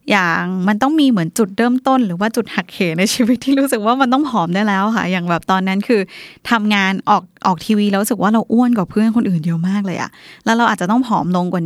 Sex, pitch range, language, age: female, 190-235 Hz, Thai, 20-39